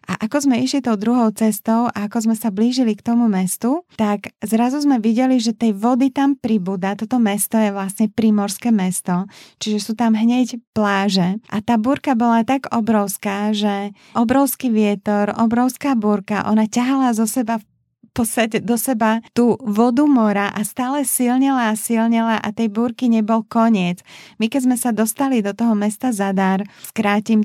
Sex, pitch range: female, 210-240 Hz